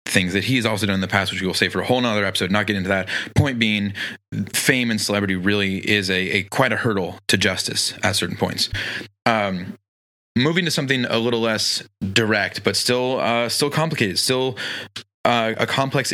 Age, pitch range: 30-49, 100-125 Hz